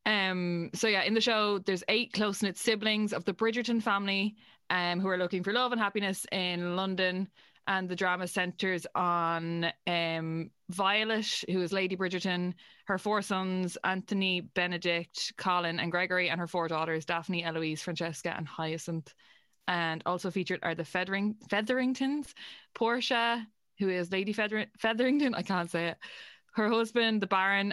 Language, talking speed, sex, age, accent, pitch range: English, 155 wpm, female, 20-39, Irish, 180-215 Hz